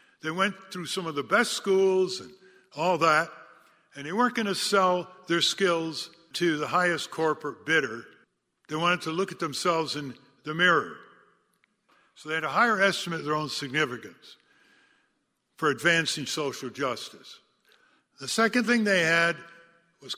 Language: English